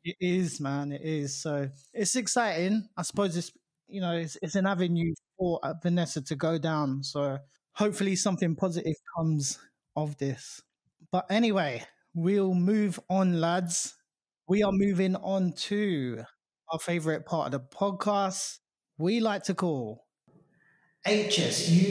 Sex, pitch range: male, 155-195 Hz